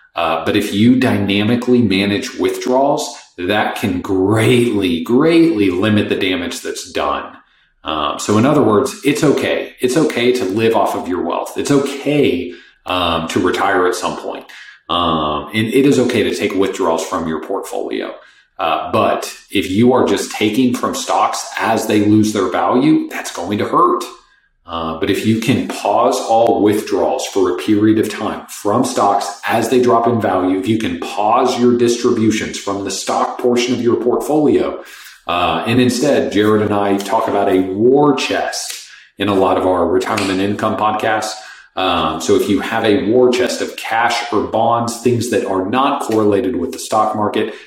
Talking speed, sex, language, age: 175 wpm, male, English, 40-59